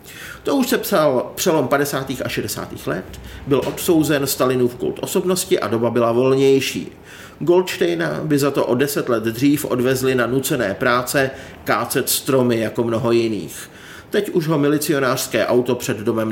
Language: Czech